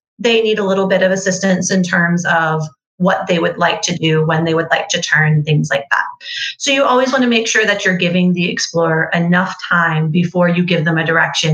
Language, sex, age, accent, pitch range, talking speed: English, female, 30-49, American, 170-225 Hz, 235 wpm